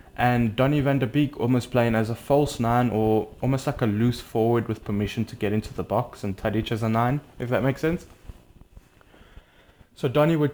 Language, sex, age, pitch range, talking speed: English, male, 20-39, 110-130 Hz, 205 wpm